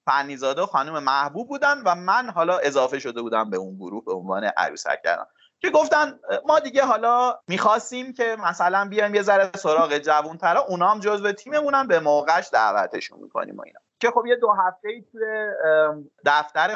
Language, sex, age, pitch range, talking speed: English, male, 30-49, 135-210 Hz, 175 wpm